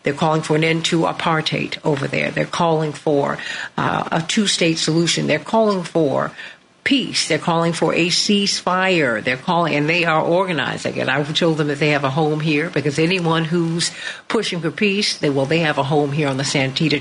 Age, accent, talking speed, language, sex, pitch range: 60-79, American, 200 wpm, English, female, 150-185 Hz